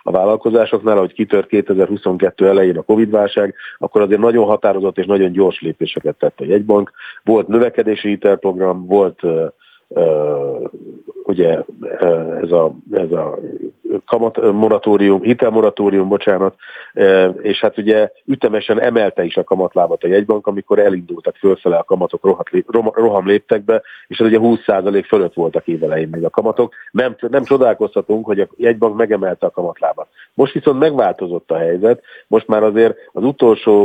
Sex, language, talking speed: male, Hungarian, 145 wpm